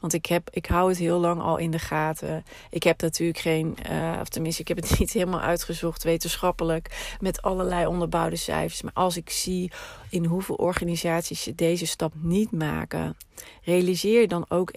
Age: 40-59